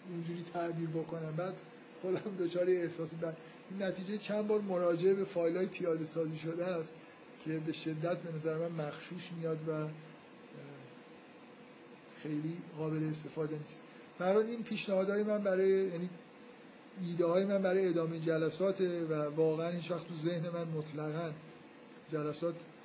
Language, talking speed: Persian, 135 wpm